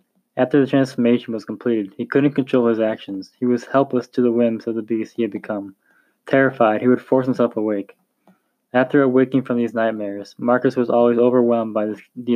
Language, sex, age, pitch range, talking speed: English, male, 10-29, 110-130 Hz, 195 wpm